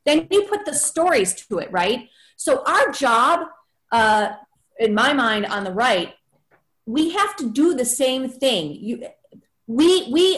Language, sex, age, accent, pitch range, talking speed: English, female, 30-49, American, 235-310 Hz, 160 wpm